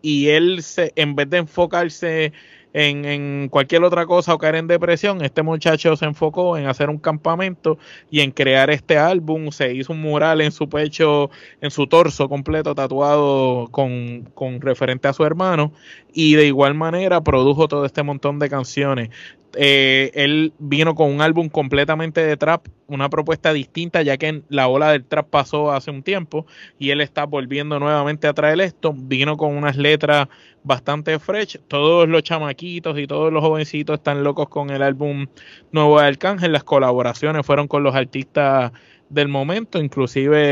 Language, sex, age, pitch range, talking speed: Spanish, male, 20-39, 140-160 Hz, 170 wpm